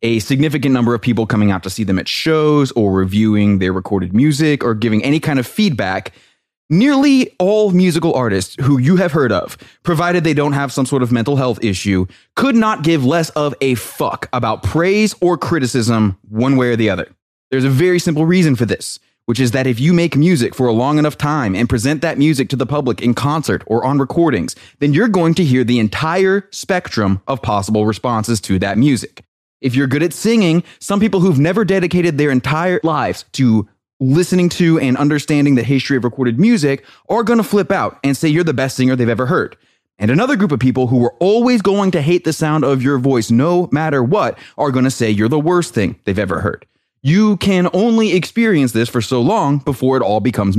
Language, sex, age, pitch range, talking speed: English, male, 20-39, 120-170 Hz, 215 wpm